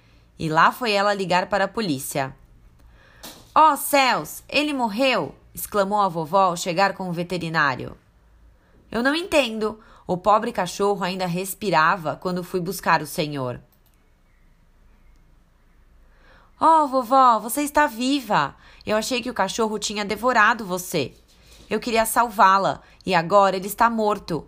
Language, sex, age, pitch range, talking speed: Portuguese, female, 20-39, 160-225 Hz, 130 wpm